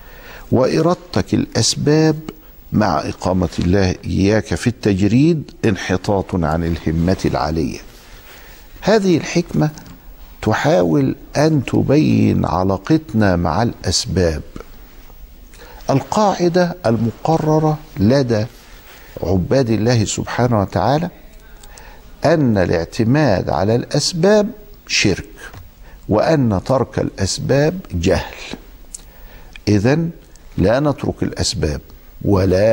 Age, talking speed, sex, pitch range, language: 50-69, 75 wpm, male, 90-145 Hz, Arabic